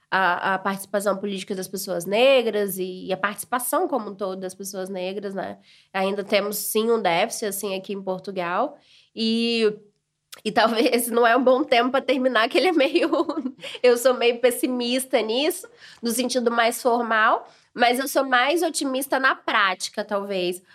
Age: 20-39